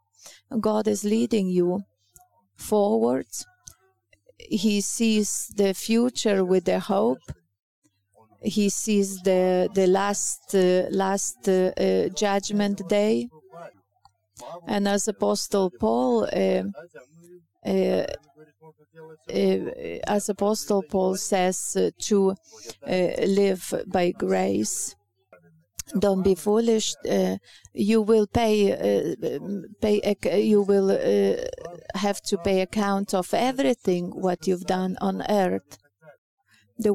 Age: 40-59